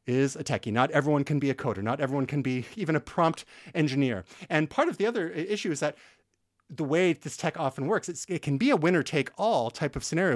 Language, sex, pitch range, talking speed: English, male, 120-155 Hz, 225 wpm